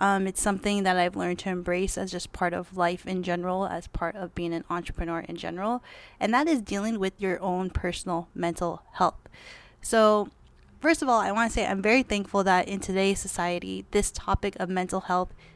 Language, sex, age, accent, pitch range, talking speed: English, female, 20-39, American, 180-205 Hz, 205 wpm